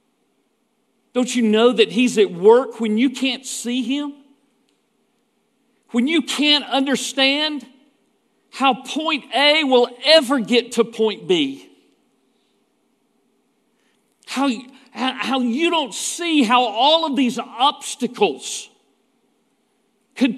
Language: English